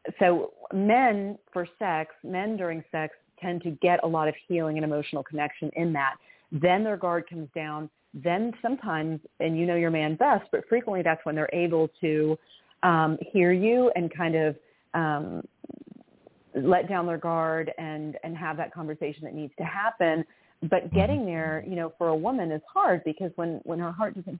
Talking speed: 185 wpm